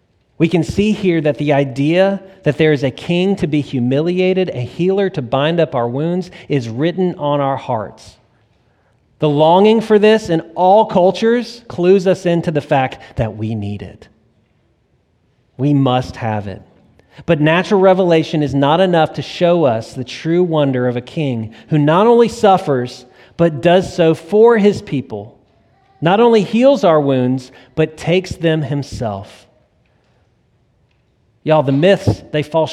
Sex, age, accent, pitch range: male, 40-59, American, 125-170 Hz